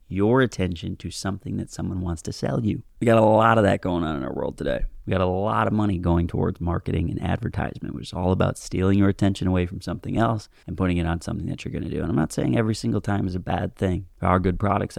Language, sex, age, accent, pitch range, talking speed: English, male, 30-49, American, 90-105 Hz, 275 wpm